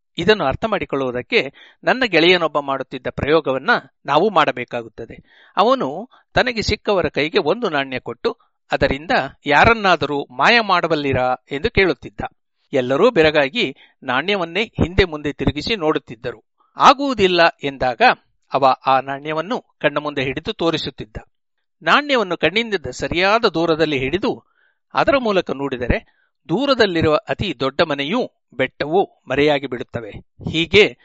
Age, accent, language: 60-79, Indian, English